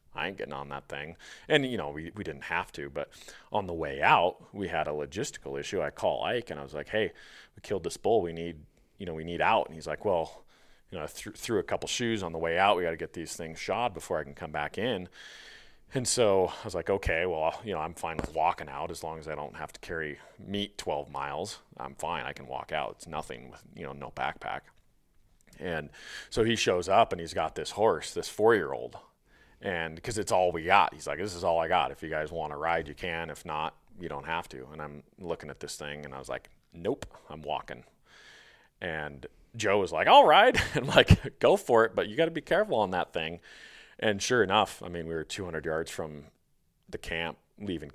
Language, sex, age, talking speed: English, male, 30-49, 245 wpm